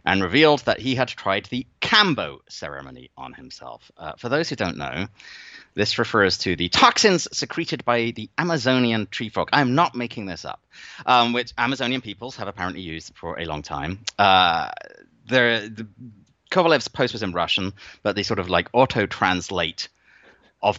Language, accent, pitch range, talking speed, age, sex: English, British, 95-135 Hz, 165 wpm, 30-49, male